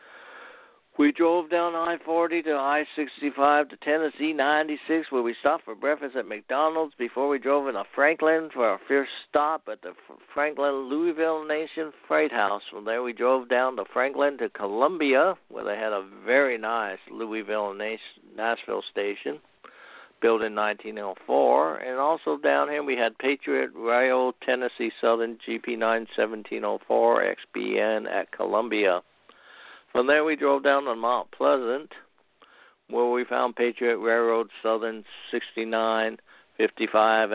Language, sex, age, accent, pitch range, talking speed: English, male, 60-79, American, 115-150 Hz, 130 wpm